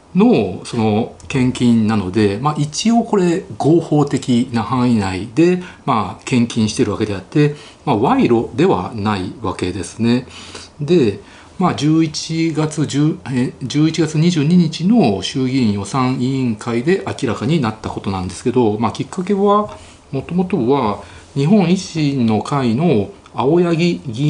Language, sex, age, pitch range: Japanese, male, 40-59, 115-175 Hz